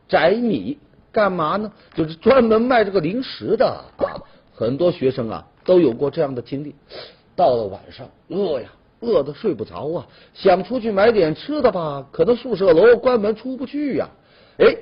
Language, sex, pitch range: Chinese, male, 145-235 Hz